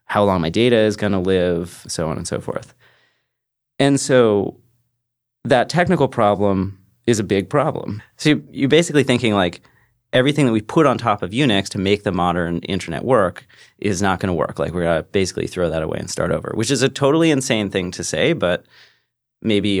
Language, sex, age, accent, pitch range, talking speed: English, male, 30-49, American, 95-125 Hz, 205 wpm